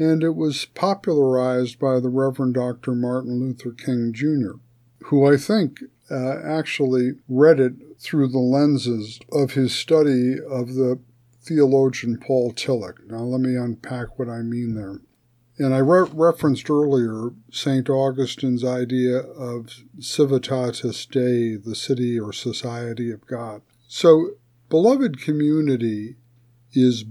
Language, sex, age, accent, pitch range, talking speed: English, male, 50-69, American, 120-135 Hz, 130 wpm